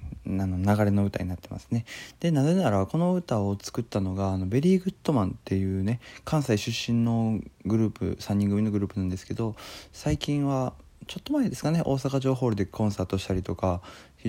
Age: 20-39